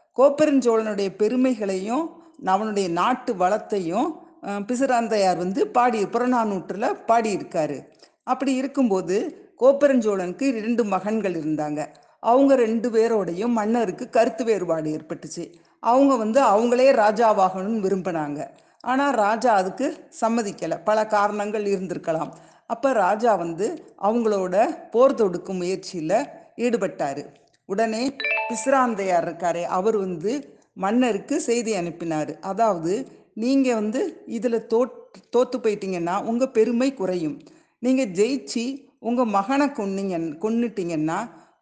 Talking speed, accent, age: 95 wpm, native, 50-69